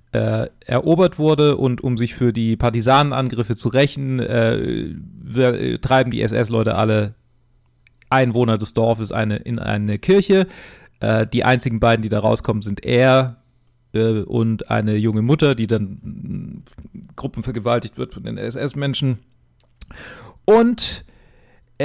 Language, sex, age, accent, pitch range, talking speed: German, male, 40-59, German, 115-140 Hz, 125 wpm